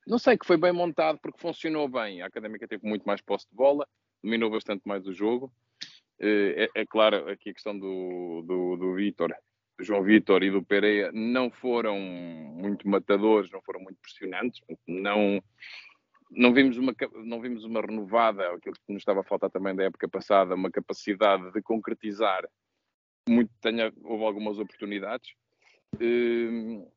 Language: Portuguese